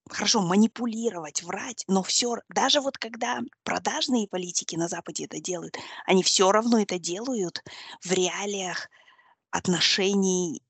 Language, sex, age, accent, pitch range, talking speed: Russian, female, 20-39, native, 180-235 Hz, 125 wpm